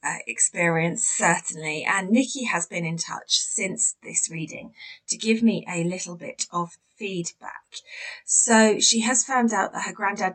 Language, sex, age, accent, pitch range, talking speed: English, female, 30-49, British, 170-220 Hz, 160 wpm